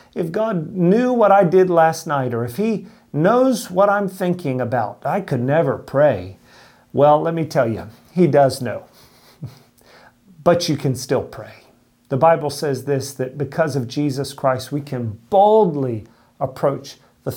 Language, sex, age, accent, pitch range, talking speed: English, male, 40-59, American, 135-195 Hz, 160 wpm